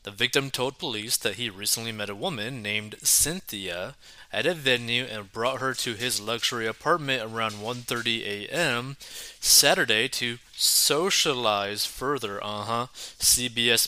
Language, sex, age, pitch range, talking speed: English, male, 20-39, 110-140 Hz, 135 wpm